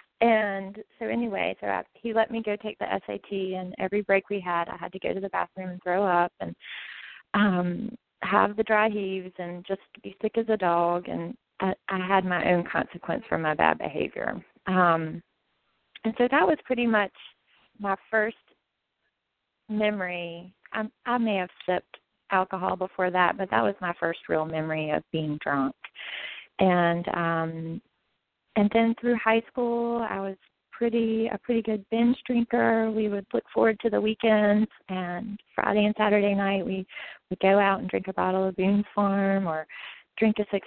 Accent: American